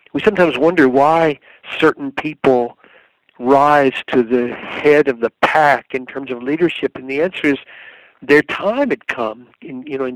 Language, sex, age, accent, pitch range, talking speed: English, male, 60-79, American, 130-160 Hz, 170 wpm